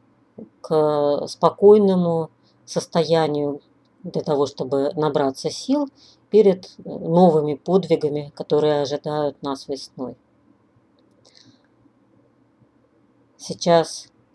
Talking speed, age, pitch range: 65 wpm, 40-59, 145-185 Hz